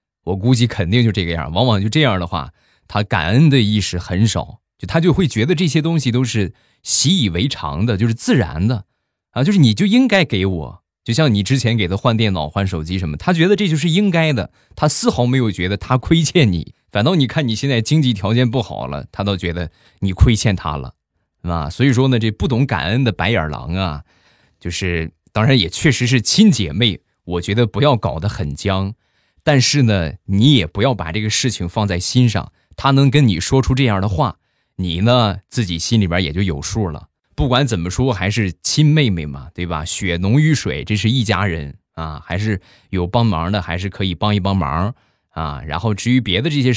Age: 20-39